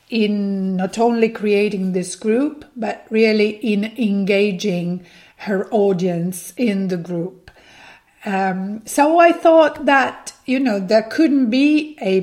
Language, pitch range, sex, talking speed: English, 190-235 Hz, female, 130 wpm